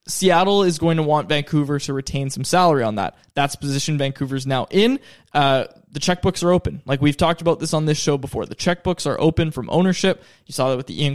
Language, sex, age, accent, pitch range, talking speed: English, male, 20-39, American, 145-190 Hz, 230 wpm